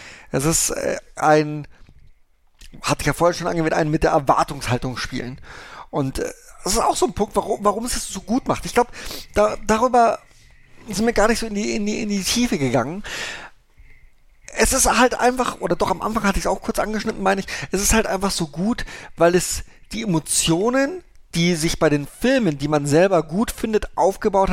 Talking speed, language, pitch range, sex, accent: 200 wpm, German, 145-220 Hz, male, German